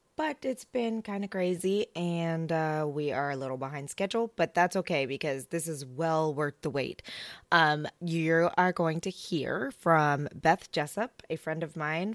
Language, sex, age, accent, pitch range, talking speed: English, female, 20-39, American, 145-175 Hz, 185 wpm